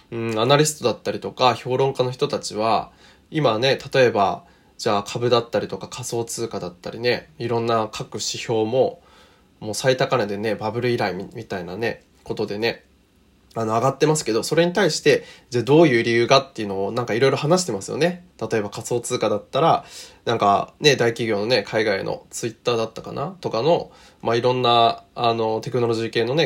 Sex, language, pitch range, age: male, Japanese, 115-165 Hz, 20-39